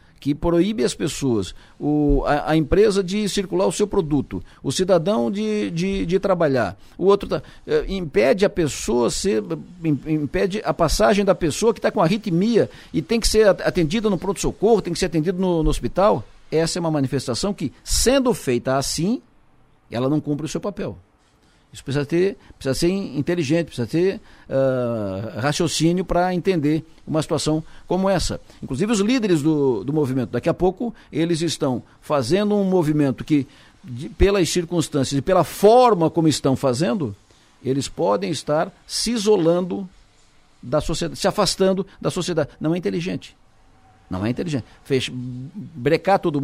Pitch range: 135-190 Hz